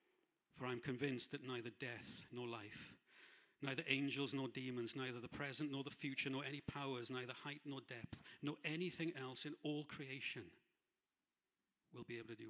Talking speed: 175 wpm